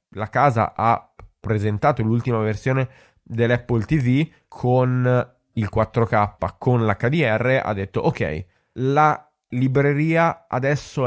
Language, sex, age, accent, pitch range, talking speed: Italian, male, 20-39, native, 115-150 Hz, 105 wpm